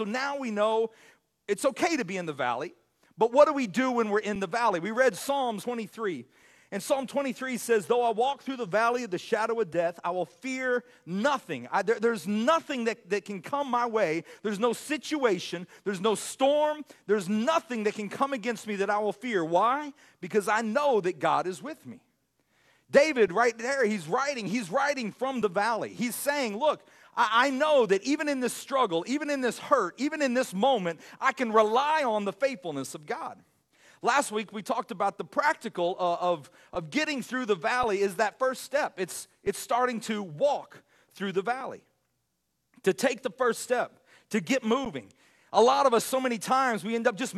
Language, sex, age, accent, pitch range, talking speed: English, male, 40-59, American, 210-265 Hz, 205 wpm